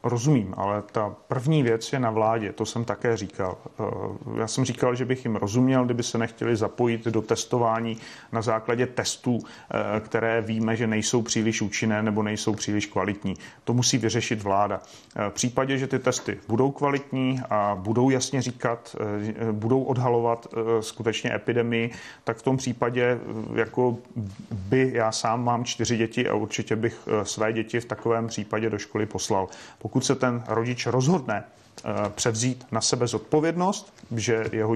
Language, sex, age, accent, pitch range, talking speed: Czech, male, 40-59, native, 110-130 Hz, 155 wpm